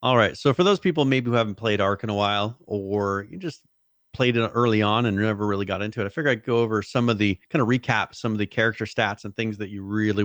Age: 30-49